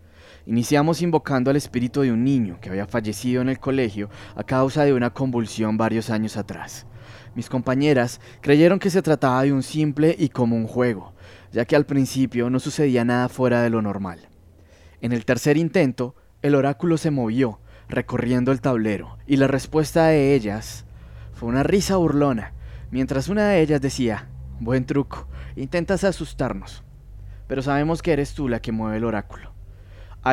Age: 20-39